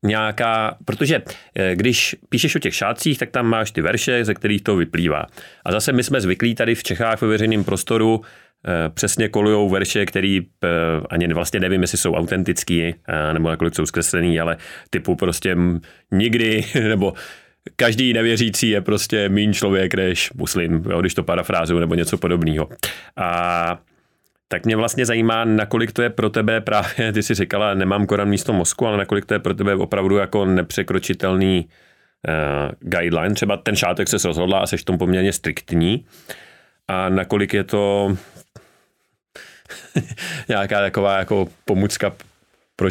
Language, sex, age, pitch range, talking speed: Czech, male, 30-49, 90-110 Hz, 155 wpm